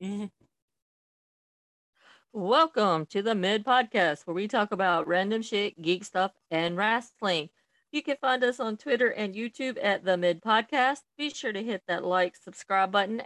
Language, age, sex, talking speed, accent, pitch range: English, 40-59, female, 160 wpm, American, 195-255 Hz